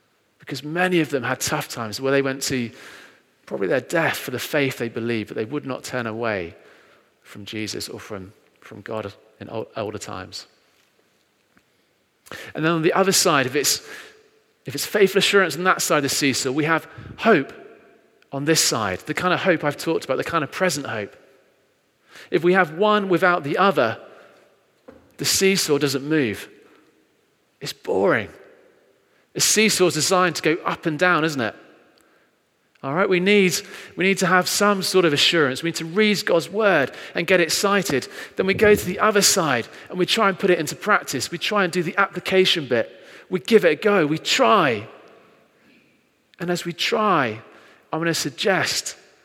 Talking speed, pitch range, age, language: 190 wpm, 140-190 Hz, 40-59, English